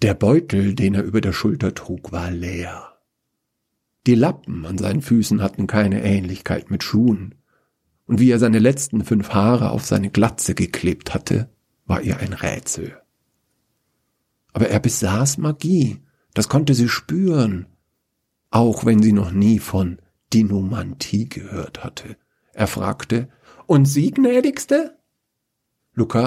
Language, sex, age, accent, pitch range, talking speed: German, male, 50-69, German, 100-135 Hz, 135 wpm